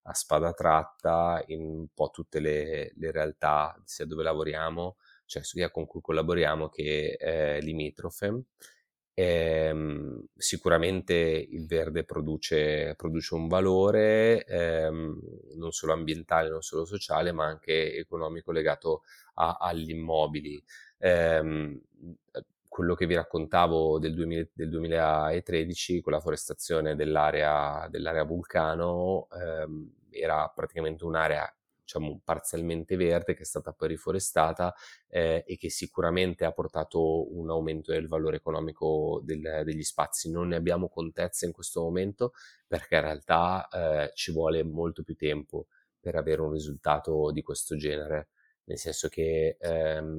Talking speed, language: 135 wpm, Italian